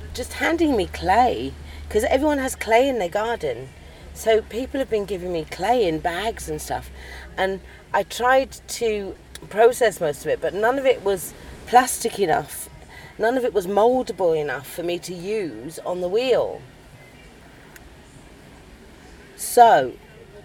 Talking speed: 150 wpm